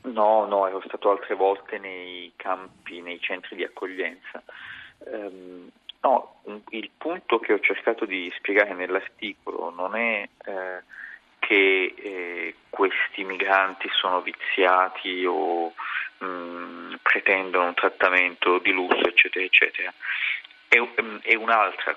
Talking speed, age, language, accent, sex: 115 wpm, 30-49, Italian, native, male